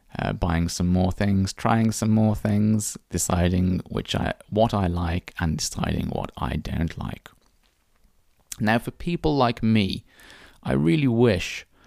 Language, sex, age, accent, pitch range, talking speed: English, male, 30-49, British, 80-105 Hz, 145 wpm